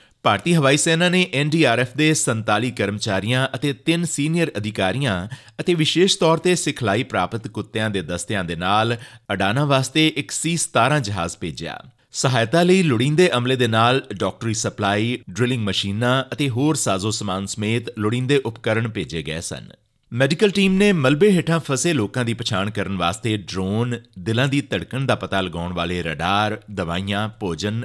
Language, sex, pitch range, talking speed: Punjabi, male, 100-140 Hz, 150 wpm